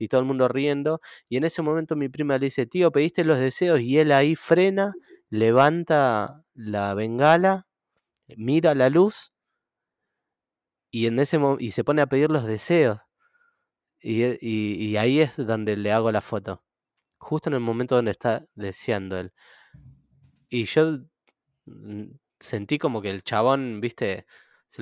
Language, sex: Spanish, male